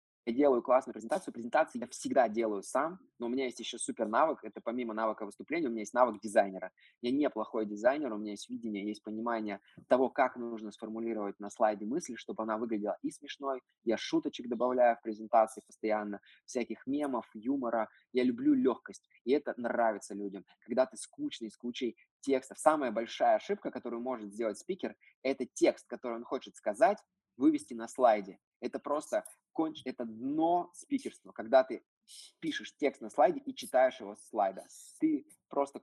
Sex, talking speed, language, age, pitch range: male, 175 wpm, Russian, 20-39, 105-130 Hz